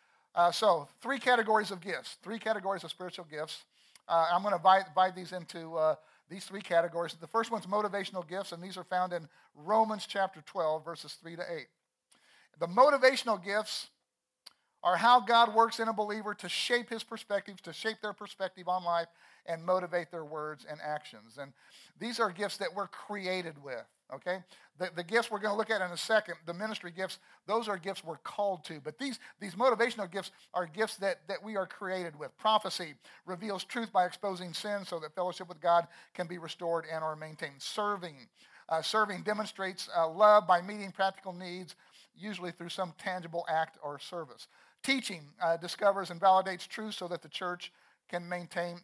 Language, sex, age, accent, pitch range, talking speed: English, male, 50-69, American, 170-210 Hz, 190 wpm